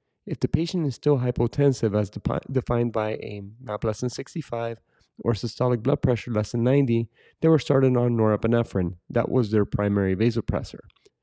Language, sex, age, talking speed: English, male, 30-49, 165 wpm